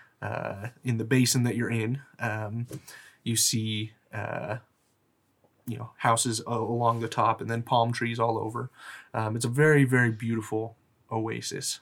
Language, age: English, 20-39